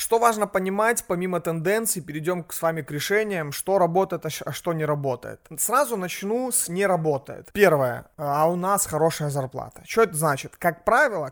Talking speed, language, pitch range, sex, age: 170 wpm, Russian, 150-185 Hz, male, 30-49